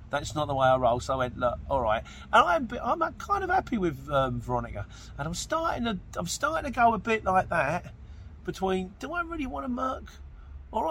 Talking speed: 230 wpm